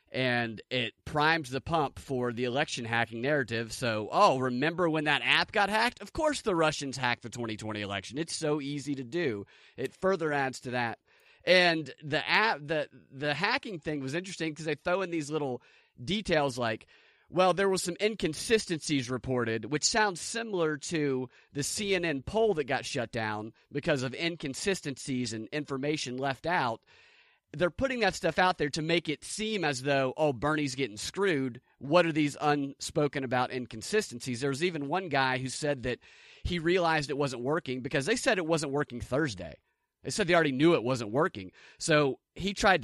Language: English